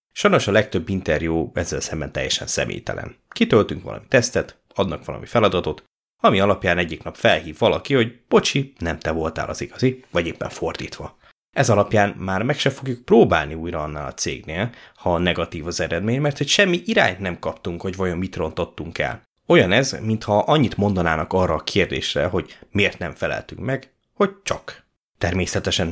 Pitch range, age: 85-110 Hz, 20-39